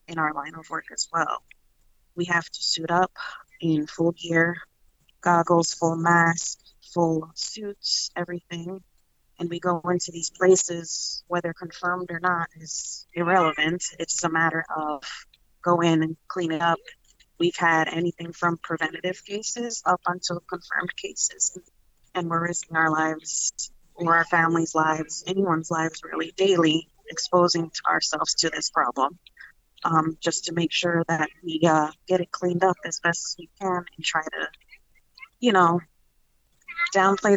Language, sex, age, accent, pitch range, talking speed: English, female, 30-49, American, 165-185 Hz, 150 wpm